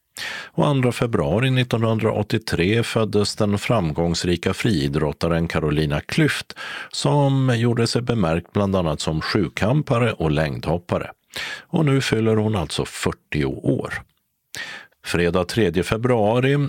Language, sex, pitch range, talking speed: Swedish, male, 85-120 Hz, 110 wpm